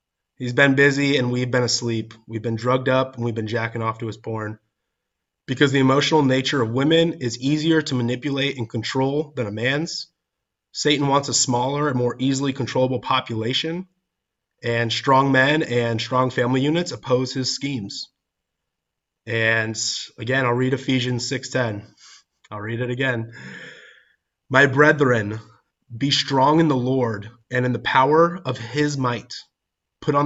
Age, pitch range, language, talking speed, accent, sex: 20-39, 115-135 Hz, English, 160 wpm, American, male